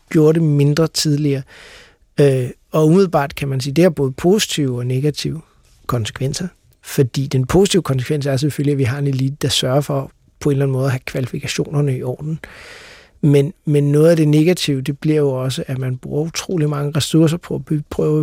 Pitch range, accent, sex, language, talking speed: 135-155 Hz, native, male, Danish, 205 wpm